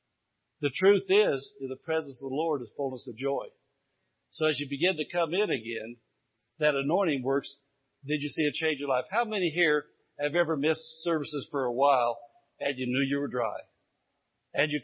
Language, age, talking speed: English, 60-79, 200 wpm